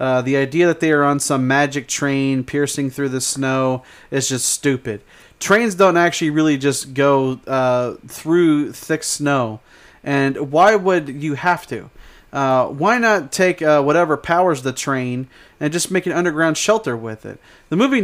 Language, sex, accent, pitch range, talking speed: English, male, American, 130-150 Hz, 175 wpm